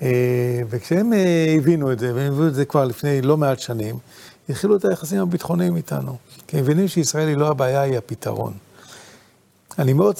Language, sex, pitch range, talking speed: Hebrew, male, 125-155 Hz, 165 wpm